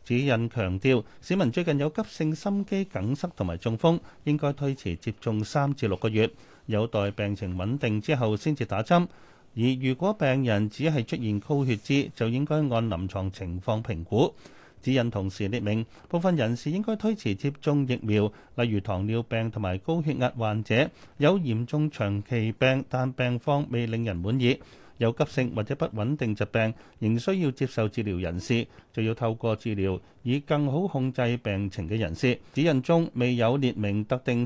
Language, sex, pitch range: Chinese, male, 110-145 Hz